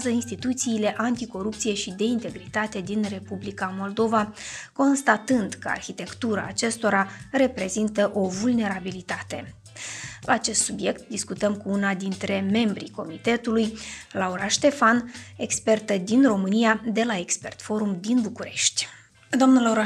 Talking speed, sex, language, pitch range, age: 110 wpm, female, Romanian, 205-235 Hz, 20-39